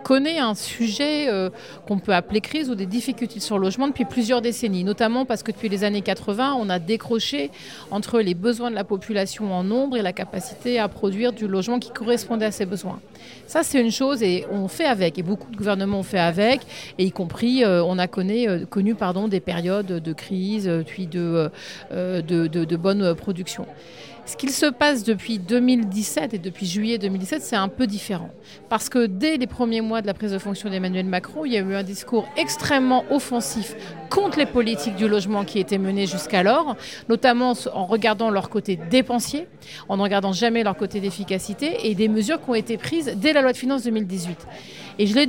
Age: 40-59